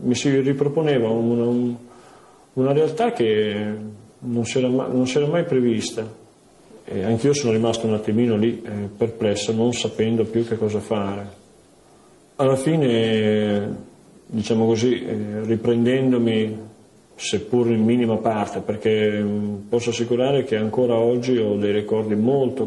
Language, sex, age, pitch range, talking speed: Italian, male, 40-59, 110-125 Hz, 120 wpm